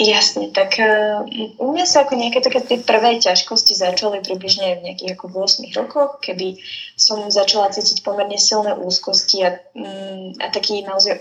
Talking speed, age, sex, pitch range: 155 wpm, 10-29, female, 185-240 Hz